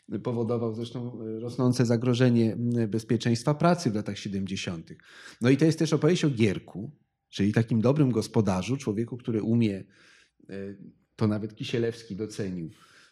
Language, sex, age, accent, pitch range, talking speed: Polish, male, 30-49, native, 110-135 Hz, 130 wpm